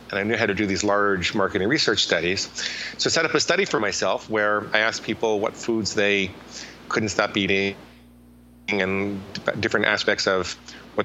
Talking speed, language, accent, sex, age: 190 wpm, English, American, male, 30-49